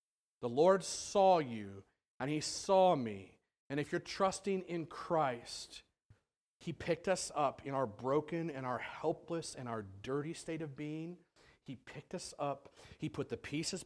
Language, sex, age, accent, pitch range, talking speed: English, male, 40-59, American, 115-160 Hz, 165 wpm